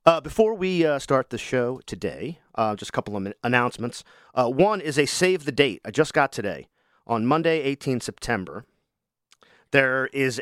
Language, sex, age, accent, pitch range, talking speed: English, male, 40-59, American, 120-150 Hz, 180 wpm